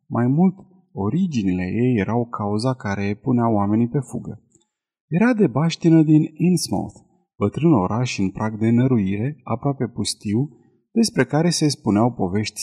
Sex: male